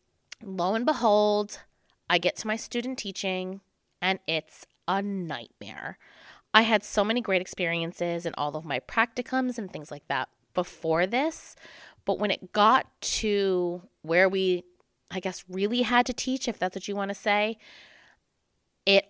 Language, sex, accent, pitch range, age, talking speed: English, female, American, 175-235 Hz, 20-39, 160 wpm